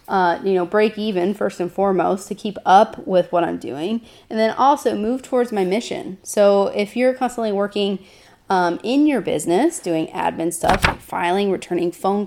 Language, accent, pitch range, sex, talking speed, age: English, American, 190-235 Hz, female, 180 wpm, 30-49